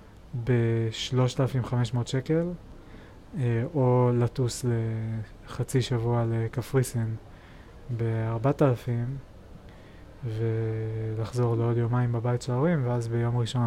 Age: 20-39